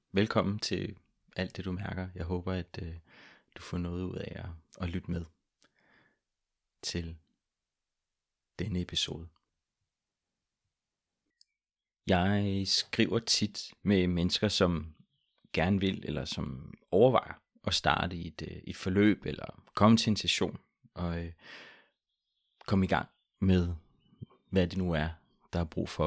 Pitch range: 85-95 Hz